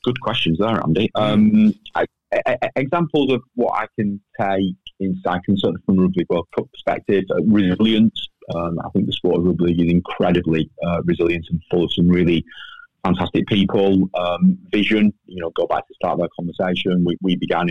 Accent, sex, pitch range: British, male, 85-100 Hz